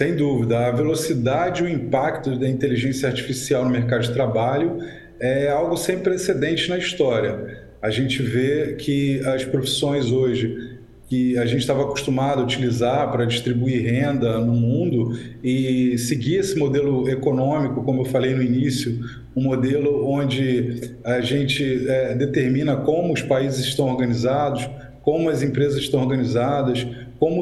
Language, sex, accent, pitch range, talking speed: English, male, Brazilian, 130-175 Hz, 145 wpm